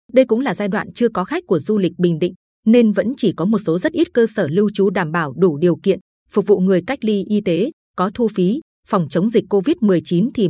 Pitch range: 180-230 Hz